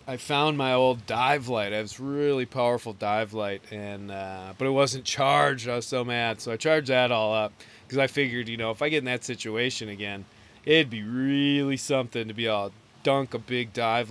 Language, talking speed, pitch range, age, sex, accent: English, 215 wpm, 110-140 Hz, 30-49, male, American